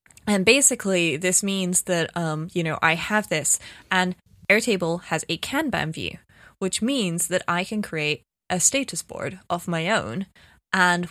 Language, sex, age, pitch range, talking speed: English, female, 20-39, 160-190 Hz, 160 wpm